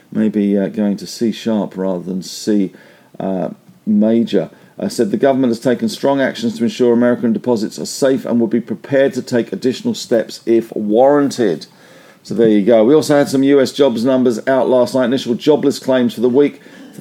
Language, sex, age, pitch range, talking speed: English, male, 50-69, 105-125 Hz, 200 wpm